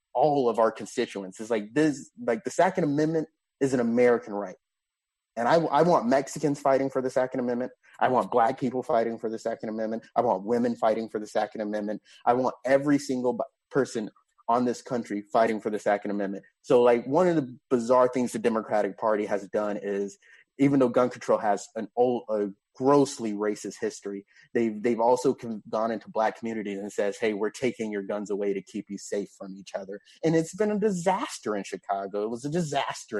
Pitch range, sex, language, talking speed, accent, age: 105-140 Hz, male, English, 205 wpm, American, 30-49